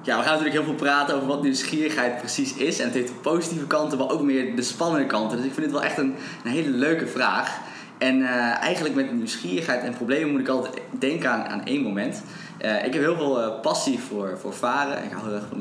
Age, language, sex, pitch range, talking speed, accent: 20-39, Dutch, male, 115-140 Hz, 250 wpm, Dutch